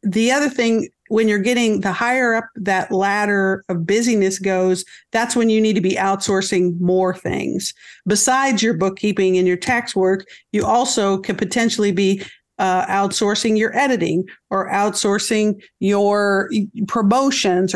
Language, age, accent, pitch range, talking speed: English, 50-69, American, 190-230 Hz, 145 wpm